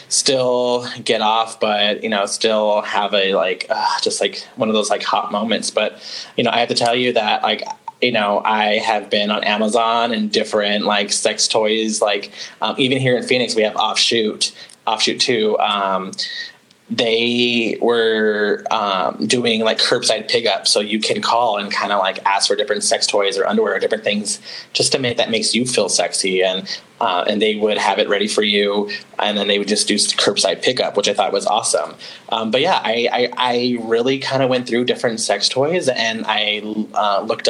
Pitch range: 110-135 Hz